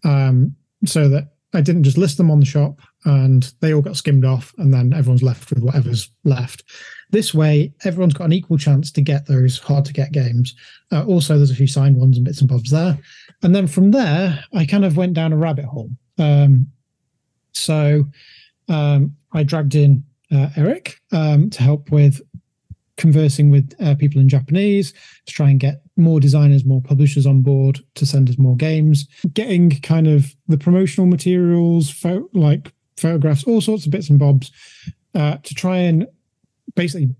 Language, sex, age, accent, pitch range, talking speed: English, male, 30-49, British, 135-165 Hz, 185 wpm